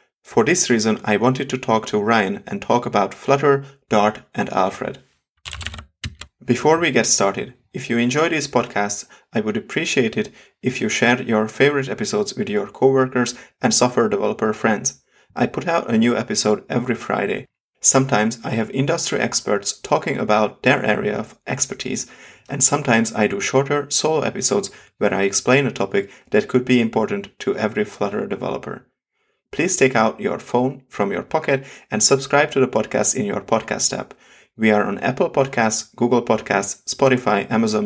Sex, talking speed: male, 170 wpm